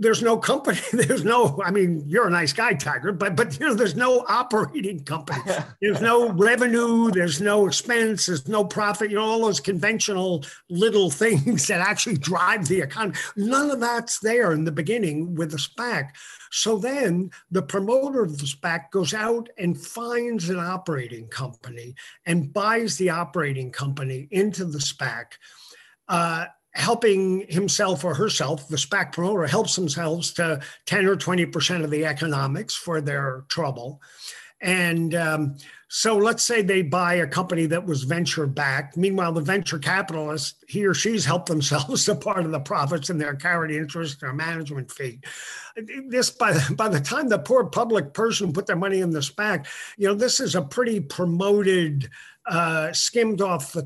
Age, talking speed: 50-69, 175 wpm